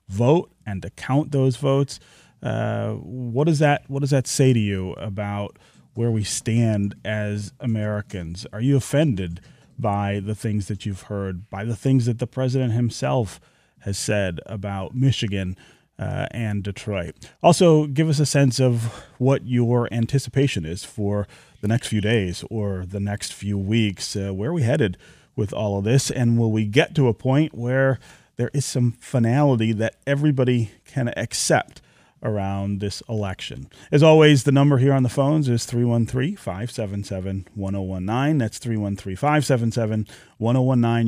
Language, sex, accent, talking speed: English, male, American, 155 wpm